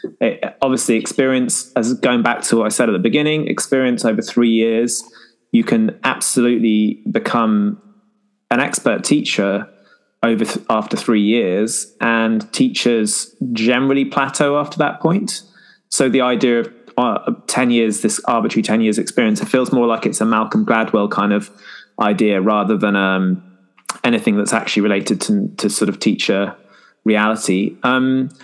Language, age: English, 20-39